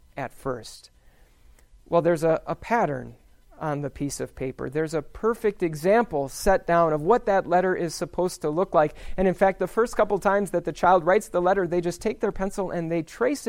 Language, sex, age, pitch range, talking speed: English, male, 40-59, 155-190 Hz, 215 wpm